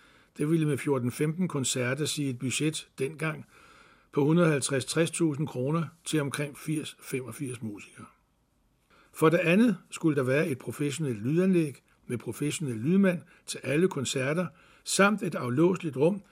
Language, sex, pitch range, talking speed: Danish, male, 135-175 Hz, 130 wpm